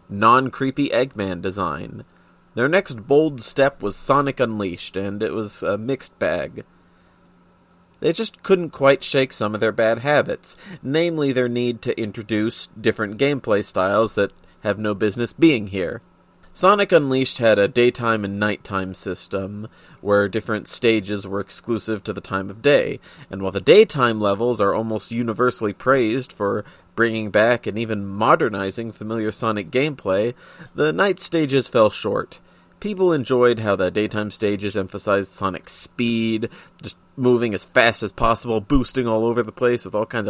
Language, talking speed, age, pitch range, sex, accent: English, 155 wpm, 30-49, 105-130 Hz, male, American